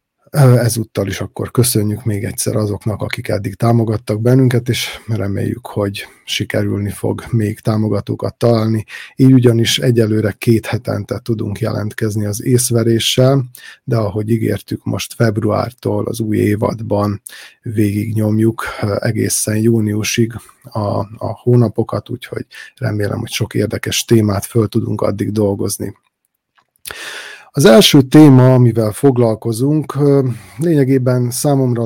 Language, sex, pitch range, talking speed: Hungarian, male, 105-125 Hz, 110 wpm